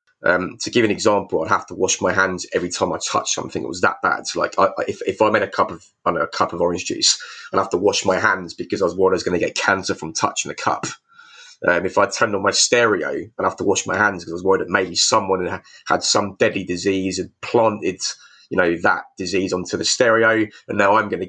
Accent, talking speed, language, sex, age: British, 270 wpm, English, male, 20-39